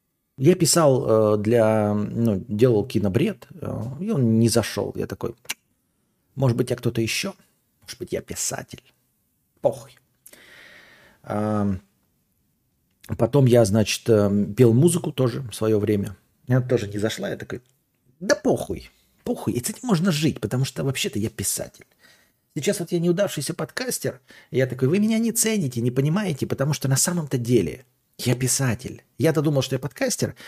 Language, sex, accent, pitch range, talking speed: Russian, male, native, 115-160 Hz, 150 wpm